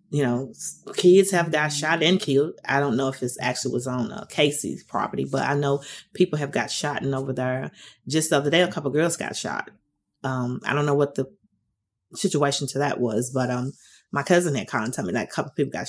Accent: American